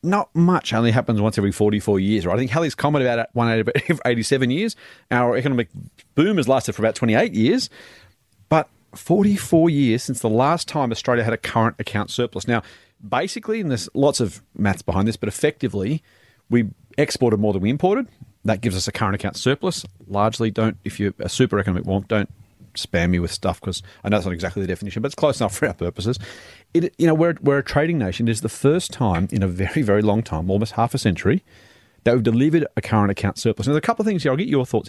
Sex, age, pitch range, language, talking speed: male, 40-59, 105-135 Hz, English, 225 wpm